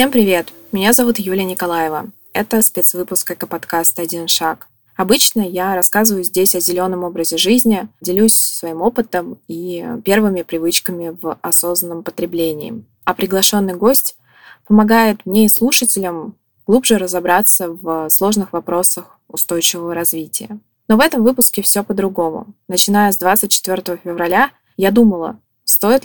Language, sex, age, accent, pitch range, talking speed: Russian, female, 20-39, native, 175-215 Hz, 130 wpm